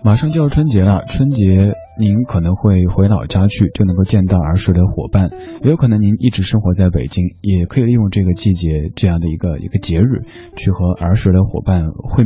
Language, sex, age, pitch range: Chinese, male, 20-39, 85-110 Hz